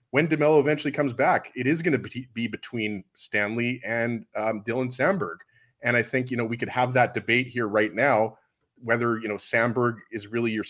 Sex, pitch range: male, 110-135 Hz